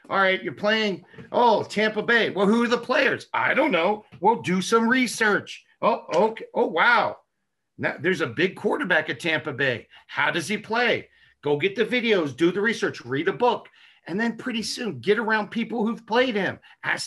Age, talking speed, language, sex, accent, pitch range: 50-69, 195 wpm, English, male, American, 180-225 Hz